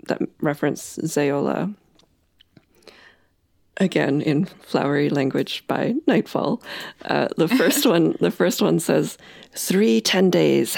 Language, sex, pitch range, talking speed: English, female, 155-200 Hz, 110 wpm